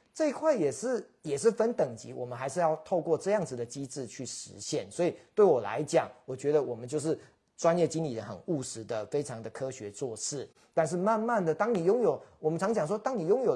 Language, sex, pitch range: Chinese, male, 125-175 Hz